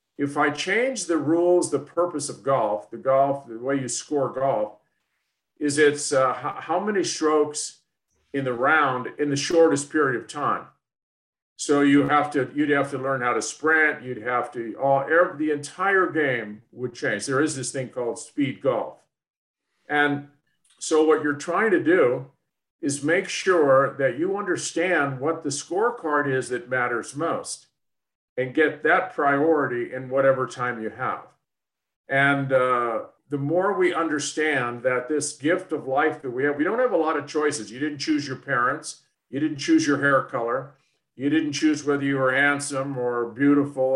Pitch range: 135-160 Hz